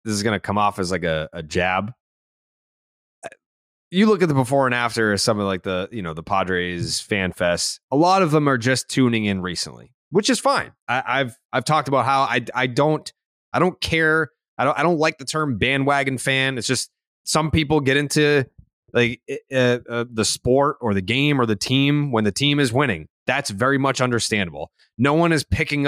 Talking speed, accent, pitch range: 210 wpm, American, 115-155 Hz